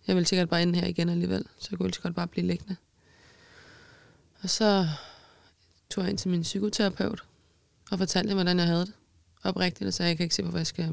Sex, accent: female, native